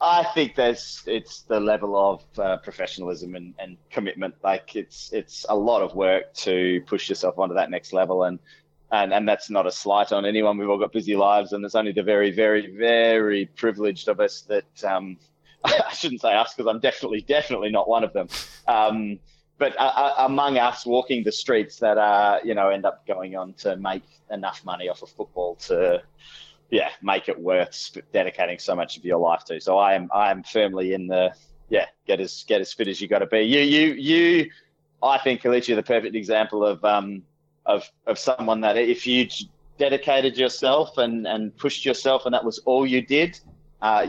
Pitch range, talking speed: 95-125 Hz, 205 wpm